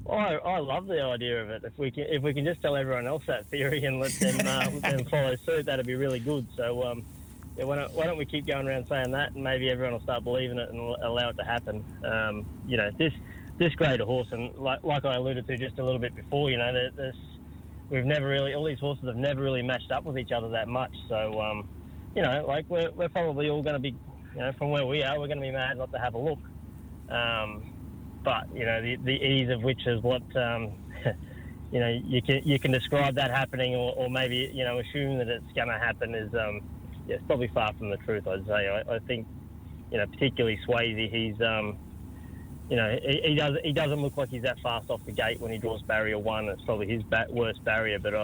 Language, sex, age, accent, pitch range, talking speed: English, male, 20-39, Australian, 110-135 Hz, 250 wpm